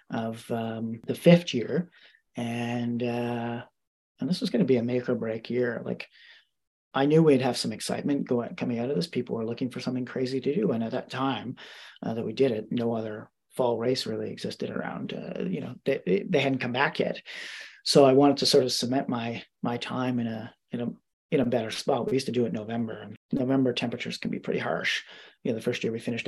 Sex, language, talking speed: male, English, 235 wpm